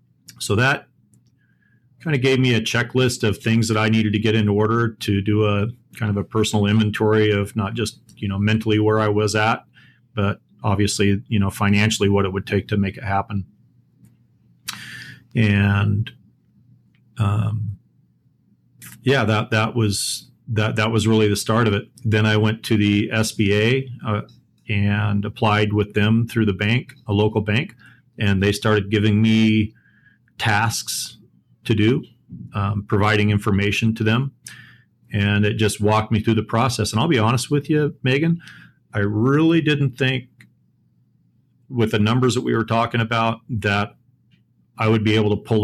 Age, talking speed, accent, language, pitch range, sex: 40-59, 160 wpm, American, English, 105-120 Hz, male